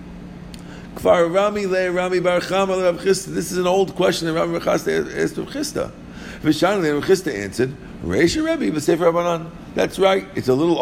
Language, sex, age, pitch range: English, male, 50-69, 110-170 Hz